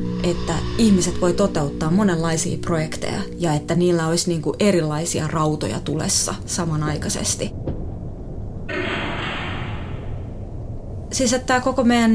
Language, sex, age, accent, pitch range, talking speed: Finnish, female, 20-39, native, 120-195 Hz, 95 wpm